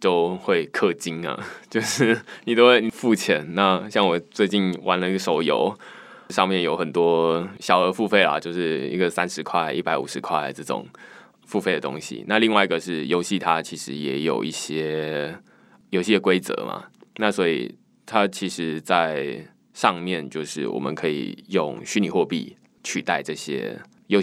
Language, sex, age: Chinese, male, 20-39